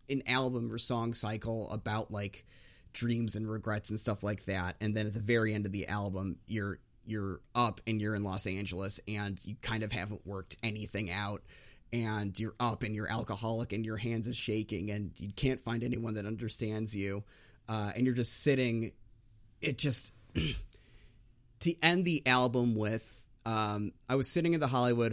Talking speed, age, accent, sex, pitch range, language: 185 wpm, 30-49, American, male, 105-120 Hz, English